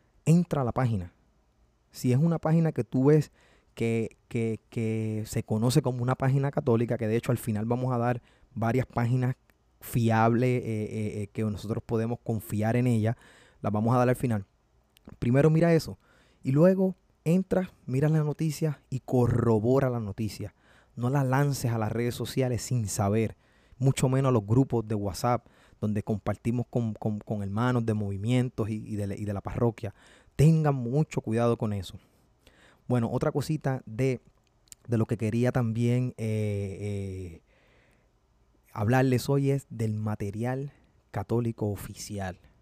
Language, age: Spanish, 20-39